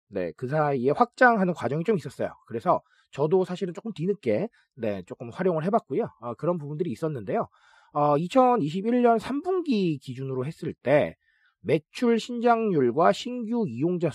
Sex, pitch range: male, 140-230 Hz